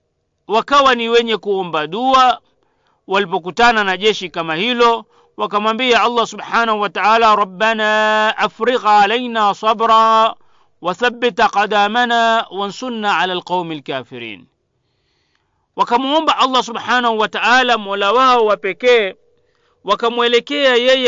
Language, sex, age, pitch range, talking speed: Swahili, male, 40-59, 185-240 Hz, 95 wpm